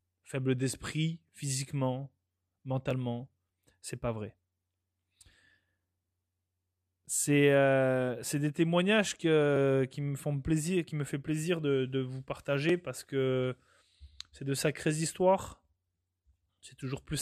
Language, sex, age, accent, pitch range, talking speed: French, male, 20-39, French, 120-140 Hz, 120 wpm